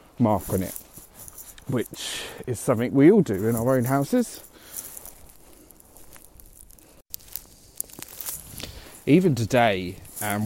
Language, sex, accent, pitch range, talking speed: English, male, British, 105-130 Hz, 90 wpm